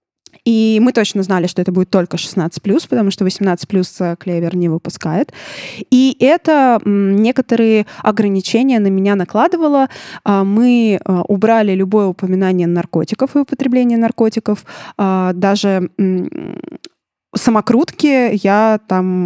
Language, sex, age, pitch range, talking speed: Russian, female, 20-39, 185-230 Hz, 105 wpm